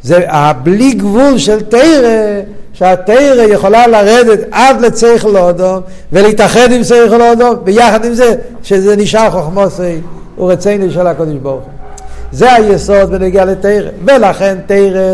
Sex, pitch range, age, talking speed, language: male, 130-200 Hz, 60-79, 135 wpm, Hebrew